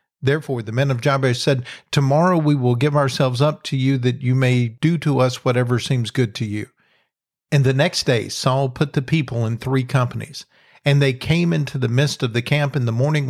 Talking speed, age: 215 wpm, 50-69